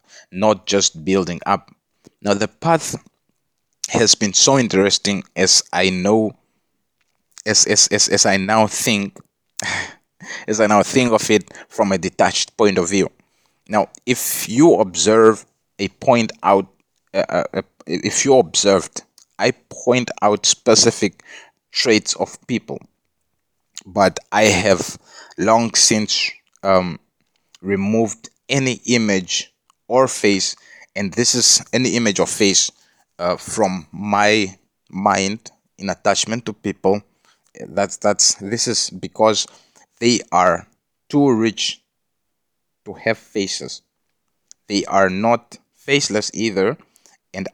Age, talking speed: 30-49, 120 wpm